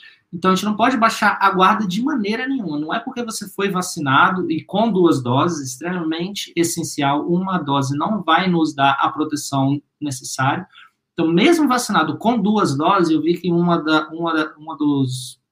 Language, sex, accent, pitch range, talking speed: Portuguese, male, Brazilian, 145-185 Hz, 180 wpm